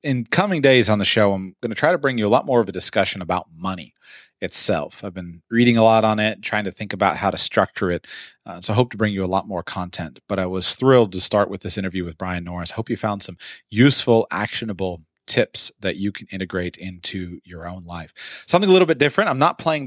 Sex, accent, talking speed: male, American, 255 wpm